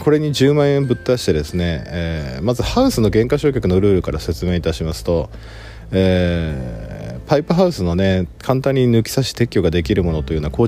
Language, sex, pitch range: Japanese, male, 80-110 Hz